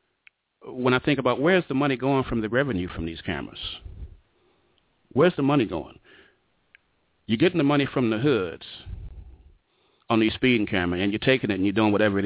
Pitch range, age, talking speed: 105-130 Hz, 40-59, 185 wpm